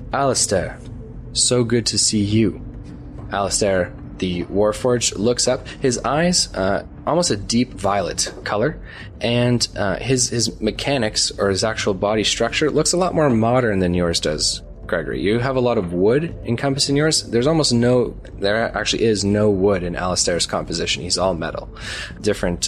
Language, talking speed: English, 160 wpm